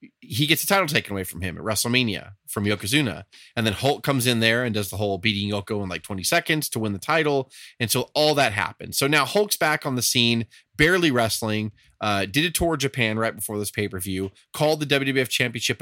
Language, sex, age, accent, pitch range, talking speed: English, male, 30-49, American, 105-135 Hz, 230 wpm